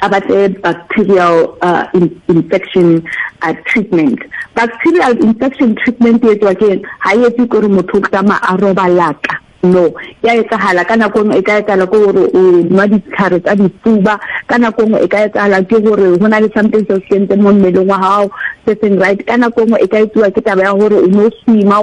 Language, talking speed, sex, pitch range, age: English, 45 wpm, female, 185-230 Hz, 50-69